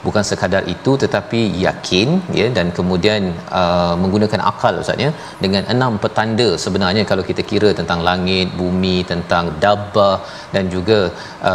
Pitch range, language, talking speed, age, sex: 100-115 Hz, Malayalam, 150 wpm, 40-59, male